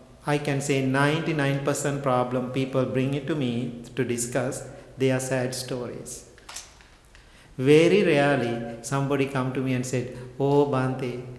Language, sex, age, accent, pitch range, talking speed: English, male, 50-69, Indian, 125-145 Hz, 130 wpm